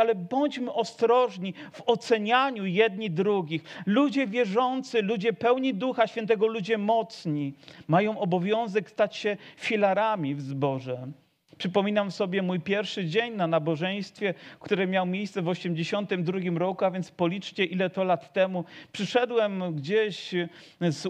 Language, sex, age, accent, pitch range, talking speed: Polish, male, 40-59, native, 170-215 Hz, 130 wpm